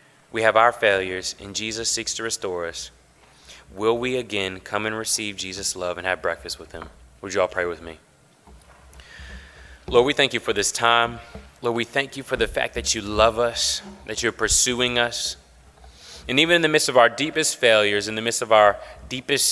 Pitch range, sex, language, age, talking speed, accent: 100-130 Hz, male, English, 20-39, 205 wpm, American